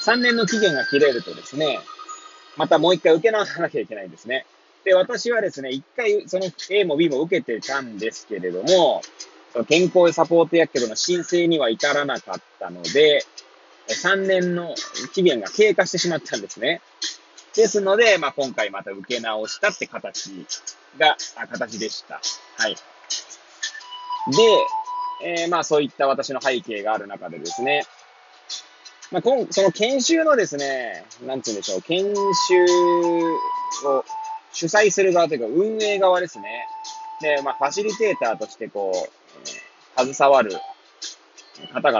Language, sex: Japanese, male